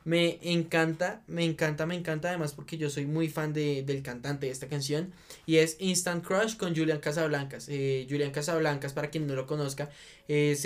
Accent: Colombian